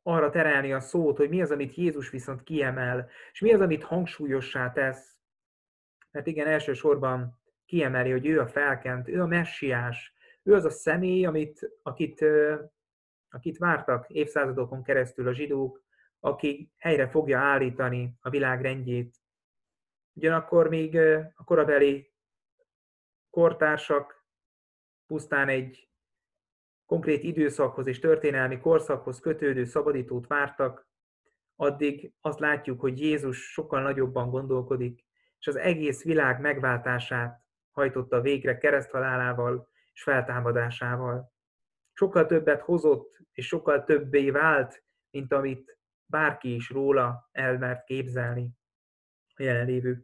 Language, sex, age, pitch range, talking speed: Hungarian, male, 30-49, 125-155 Hz, 115 wpm